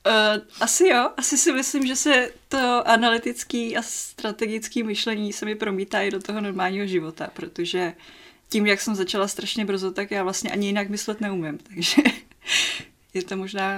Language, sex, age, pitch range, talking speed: Czech, female, 20-39, 185-220 Hz, 170 wpm